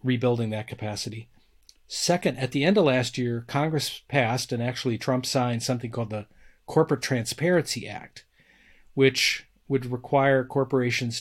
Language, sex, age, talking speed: English, male, 40-59, 140 wpm